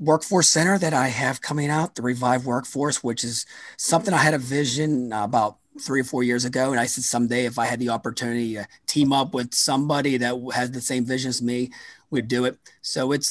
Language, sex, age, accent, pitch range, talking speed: English, male, 30-49, American, 120-155 Hz, 220 wpm